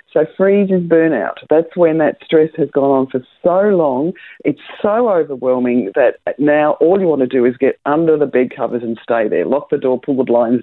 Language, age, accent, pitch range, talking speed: English, 50-69, Australian, 135-180 Hz, 220 wpm